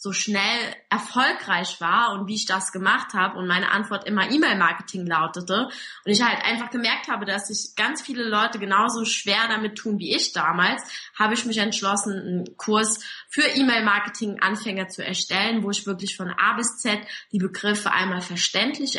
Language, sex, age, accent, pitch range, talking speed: German, female, 20-39, German, 190-230 Hz, 175 wpm